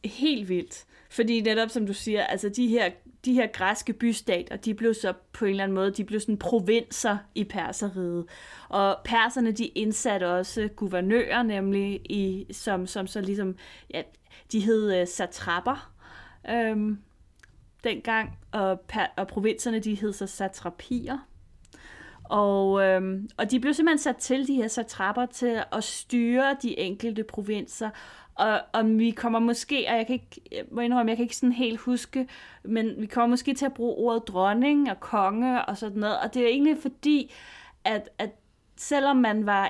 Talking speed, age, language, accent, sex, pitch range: 165 wpm, 30-49, Danish, native, female, 195-245 Hz